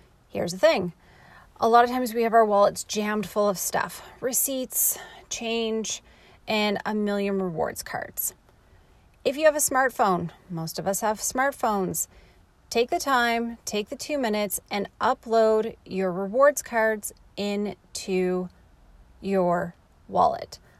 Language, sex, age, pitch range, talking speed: English, female, 30-49, 190-240 Hz, 135 wpm